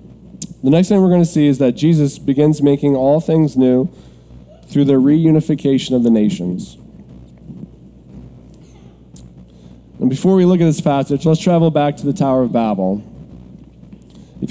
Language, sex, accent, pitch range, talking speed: English, male, American, 115-165 Hz, 150 wpm